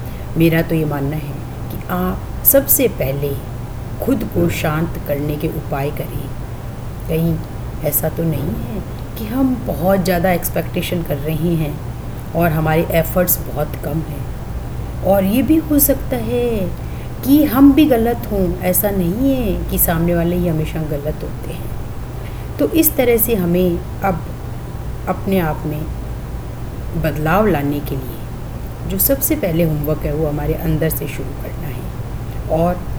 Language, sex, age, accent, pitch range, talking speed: Hindi, female, 30-49, native, 130-170 Hz, 150 wpm